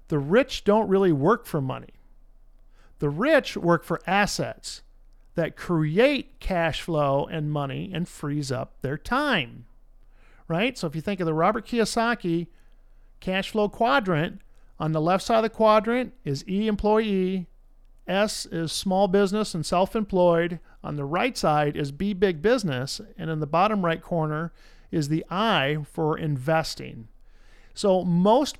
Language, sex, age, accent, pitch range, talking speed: English, male, 50-69, American, 145-200 Hz, 150 wpm